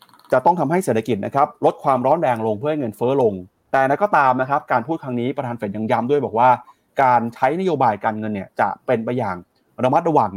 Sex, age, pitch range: male, 30-49, 110-145 Hz